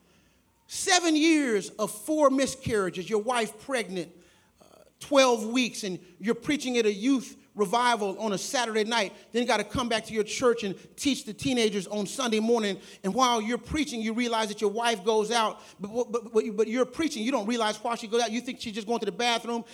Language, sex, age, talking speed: English, male, 40-59, 215 wpm